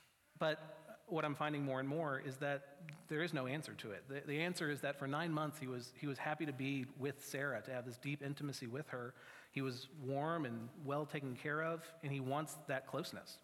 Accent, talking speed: American, 230 wpm